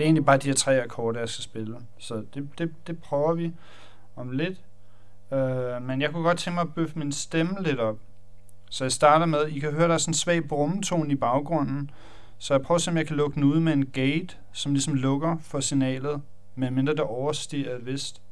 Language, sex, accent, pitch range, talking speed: Danish, male, native, 100-140 Hz, 235 wpm